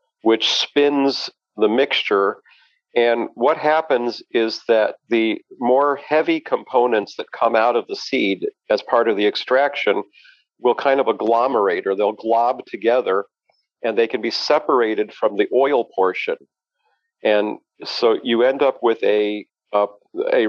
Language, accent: English, American